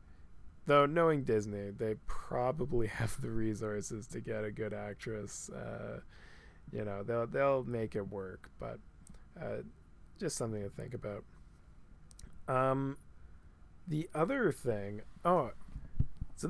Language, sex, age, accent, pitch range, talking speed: English, male, 20-39, American, 100-120 Hz, 125 wpm